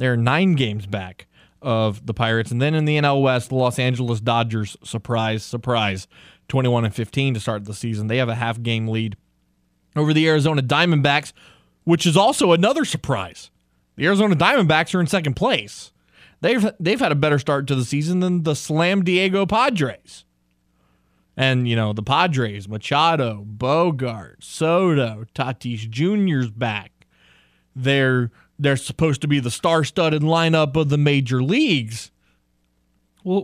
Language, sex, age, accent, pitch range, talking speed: English, male, 20-39, American, 110-155 Hz, 155 wpm